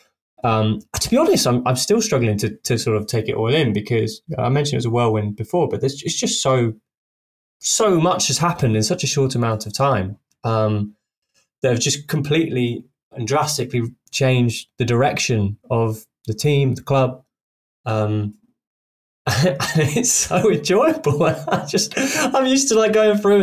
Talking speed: 175 wpm